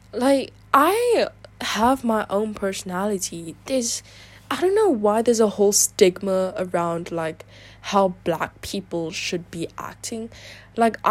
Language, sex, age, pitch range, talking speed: English, female, 10-29, 175-235 Hz, 130 wpm